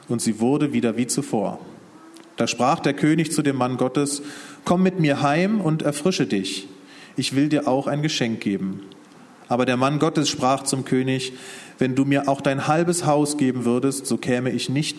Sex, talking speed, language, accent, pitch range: male, 190 wpm, German, German, 120-145 Hz